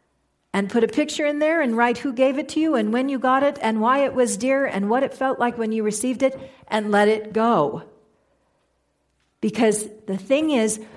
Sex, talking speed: female, 220 wpm